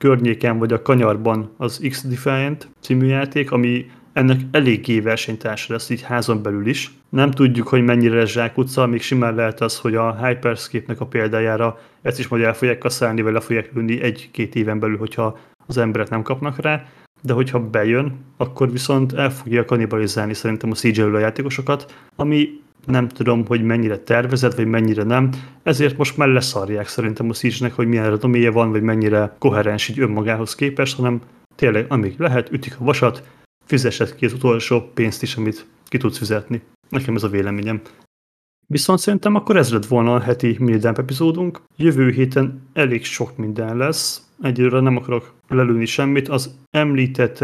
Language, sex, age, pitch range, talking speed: Hungarian, male, 30-49, 115-135 Hz, 170 wpm